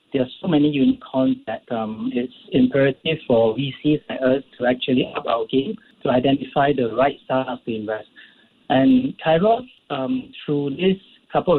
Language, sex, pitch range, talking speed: English, male, 125-170 Hz, 160 wpm